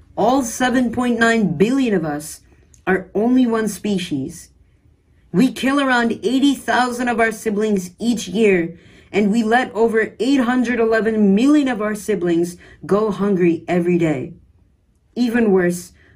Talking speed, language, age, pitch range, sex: 125 wpm, English, 40-59, 170-230 Hz, female